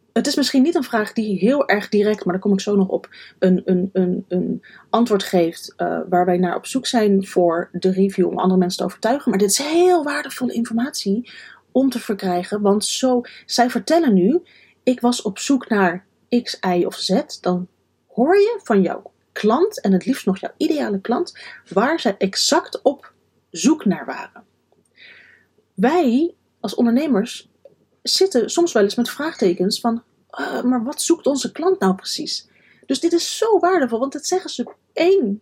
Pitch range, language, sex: 195-265 Hz, Dutch, female